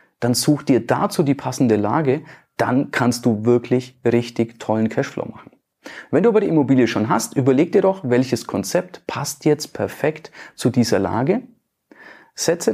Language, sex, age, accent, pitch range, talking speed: German, male, 40-59, German, 115-155 Hz, 160 wpm